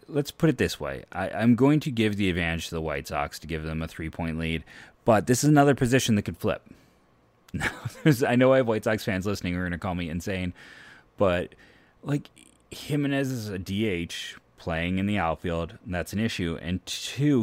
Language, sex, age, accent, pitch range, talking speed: English, male, 30-49, American, 85-110 Hz, 210 wpm